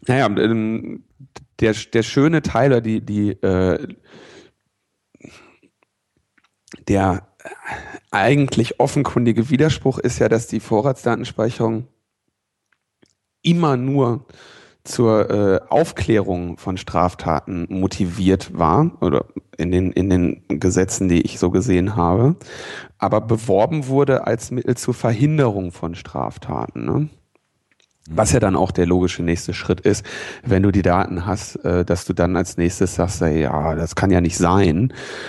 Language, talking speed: German, 125 wpm